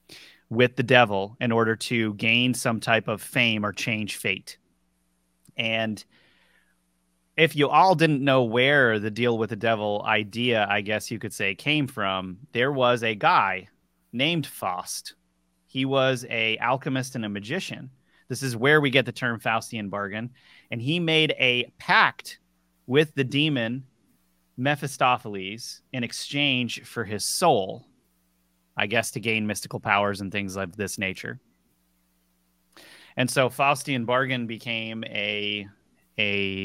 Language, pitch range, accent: English, 100-125 Hz, American